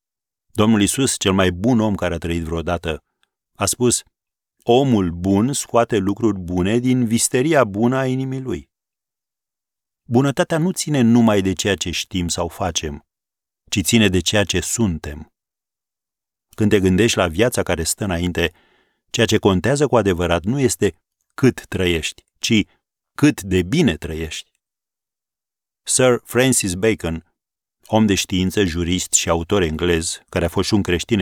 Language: Romanian